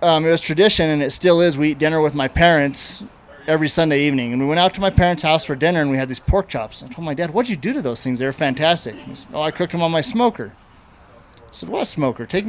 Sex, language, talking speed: male, English, 300 wpm